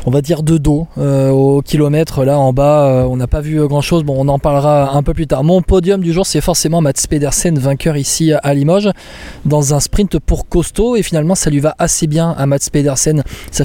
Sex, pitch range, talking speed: male, 140-170 Hz, 235 wpm